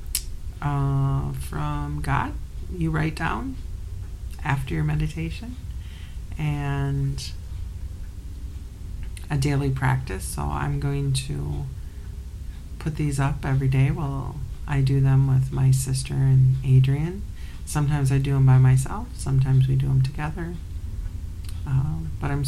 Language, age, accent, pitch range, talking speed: English, 40-59, American, 85-135 Hz, 120 wpm